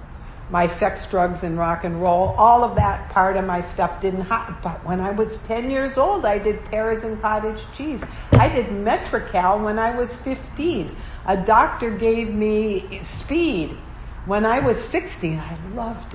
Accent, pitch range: American, 175-220 Hz